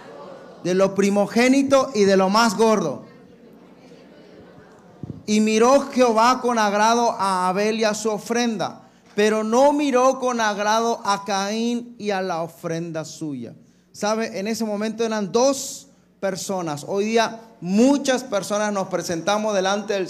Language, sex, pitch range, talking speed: Spanish, male, 190-225 Hz, 135 wpm